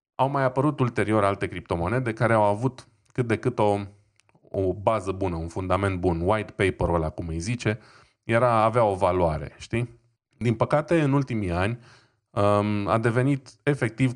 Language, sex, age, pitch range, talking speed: Romanian, male, 20-39, 100-125 Hz, 165 wpm